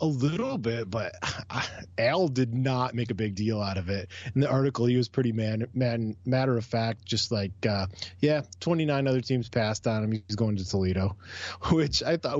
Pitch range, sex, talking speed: 95-130 Hz, male, 200 wpm